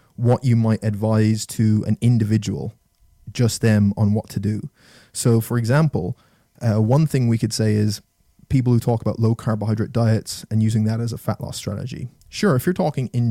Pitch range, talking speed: 110-125 Hz, 195 wpm